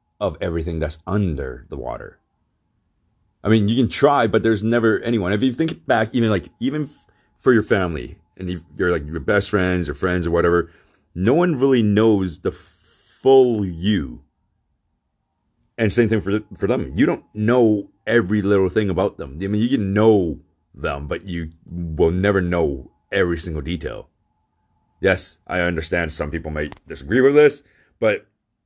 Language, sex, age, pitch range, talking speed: English, male, 30-49, 80-110 Hz, 170 wpm